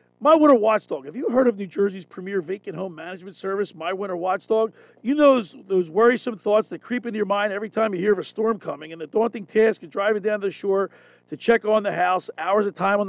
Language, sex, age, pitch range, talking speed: English, male, 40-59, 195-245 Hz, 250 wpm